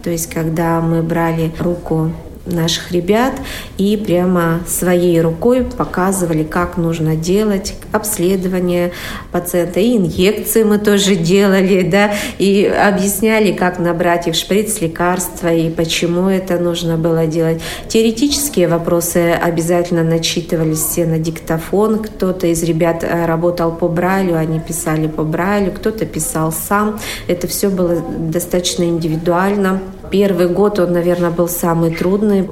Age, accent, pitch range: 40-59, native, 170-200 Hz